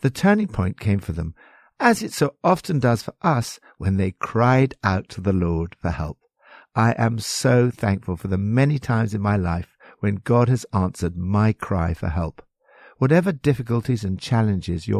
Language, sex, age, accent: English, male, 60-79, British